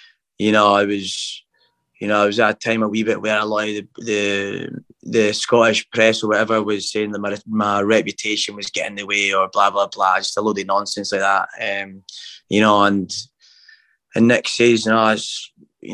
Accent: British